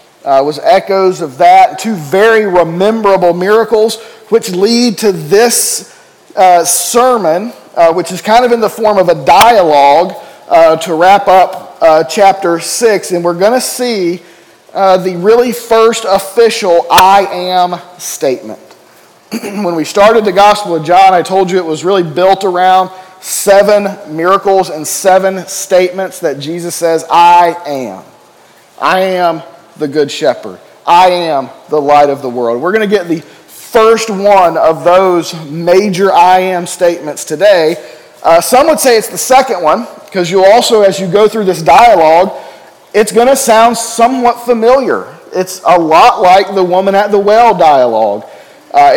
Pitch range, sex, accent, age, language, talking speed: 175-215 Hz, male, American, 40-59, English, 160 wpm